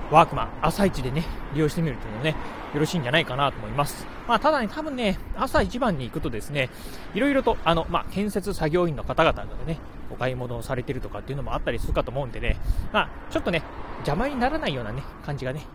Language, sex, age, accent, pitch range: Japanese, male, 30-49, native, 125-170 Hz